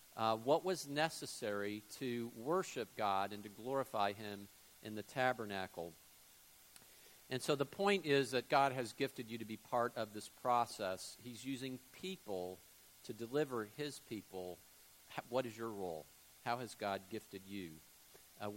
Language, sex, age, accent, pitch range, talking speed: English, male, 50-69, American, 100-135 Hz, 150 wpm